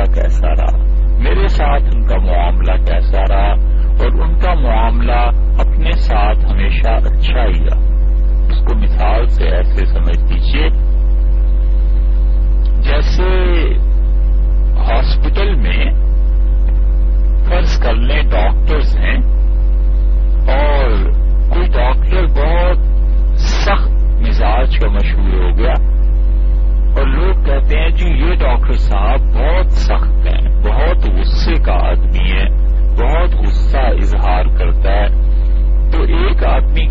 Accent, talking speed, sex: Indian, 100 wpm, male